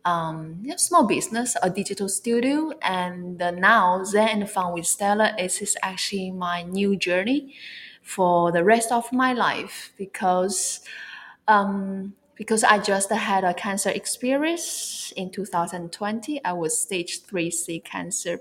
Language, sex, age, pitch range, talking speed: English, female, 20-39, 180-230 Hz, 135 wpm